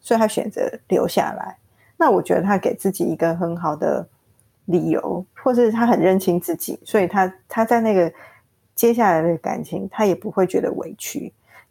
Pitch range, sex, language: 175-215 Hz, female, Chinese